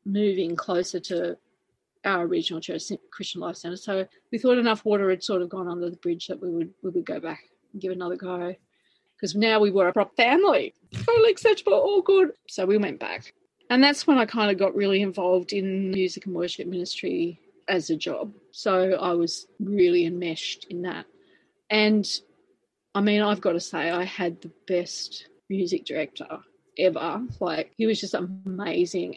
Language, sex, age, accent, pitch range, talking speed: English, female, 30-49, Australian, 180-220 Hz, 185 wpm